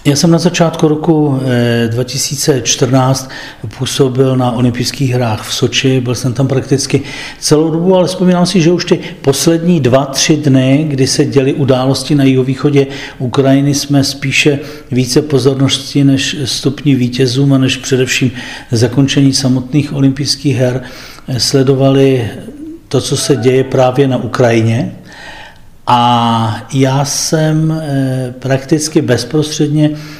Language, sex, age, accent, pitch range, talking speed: Czech, male, 40-59, native, 125-145 Hz, 125 wpm